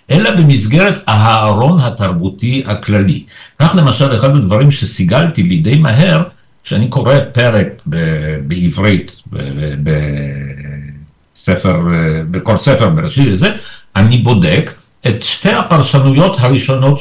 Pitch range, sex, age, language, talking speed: 95-145 Hz, male, 60-79, Hebrew, 105 wpm